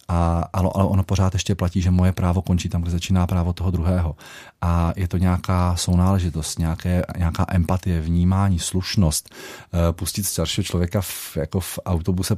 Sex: male